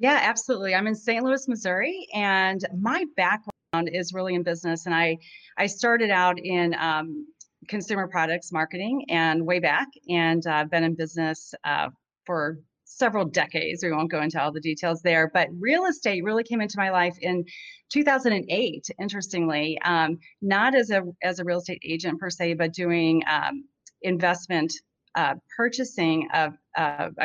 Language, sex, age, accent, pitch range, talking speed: English, female, 30-49, American, 160-200 Hz, 160 wpm